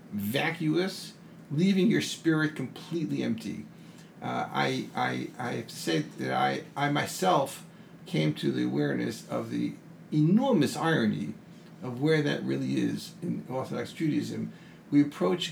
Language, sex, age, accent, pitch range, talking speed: English, male, 50-69, American, 155-195 Hz, 130 wpm